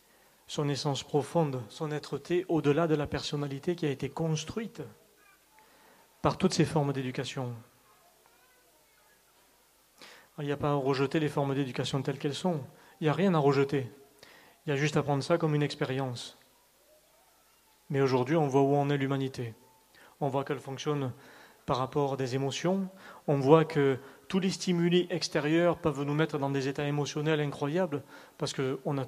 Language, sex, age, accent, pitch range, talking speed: French, male, 40-59, French, 135-155 Hz, 170 wpm